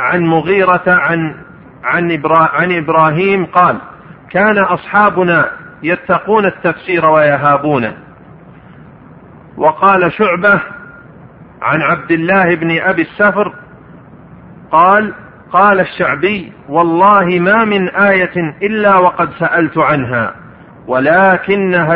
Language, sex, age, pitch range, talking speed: Arabic, male, 50-69, 160-195 Hz, 85 wpm